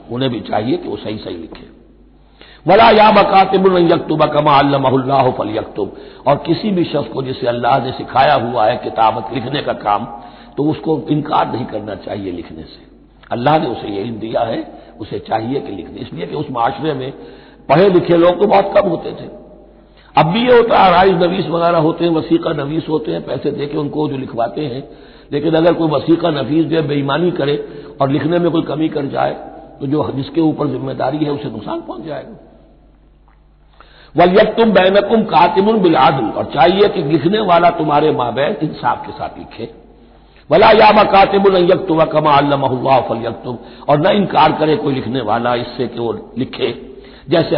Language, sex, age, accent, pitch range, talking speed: Hindi, male, 60-79, native, 145-195 Hz, 170 wpm